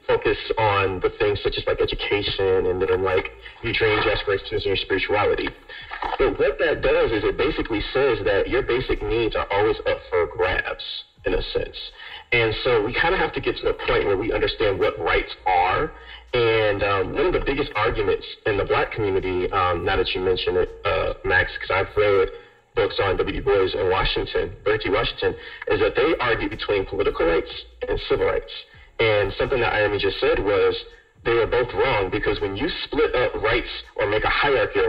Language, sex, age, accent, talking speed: English, male, 40-59, American, 200 wpm